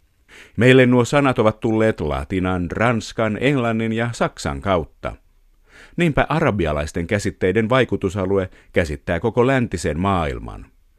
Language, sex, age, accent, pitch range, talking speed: Finnish, male, 50-69, native, 90-120 Hz, 105 wpm